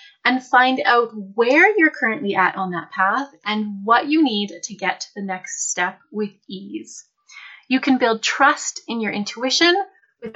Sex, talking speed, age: female, 175 wpm, 30-49